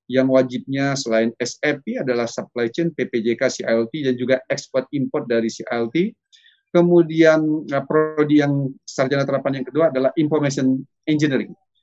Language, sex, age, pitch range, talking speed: Indonesian, male, 30-49, 125-145 Hz, 120 wpm